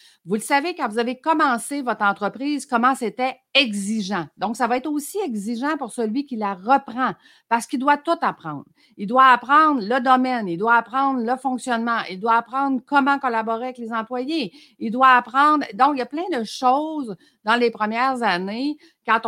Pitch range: 205-270 Hz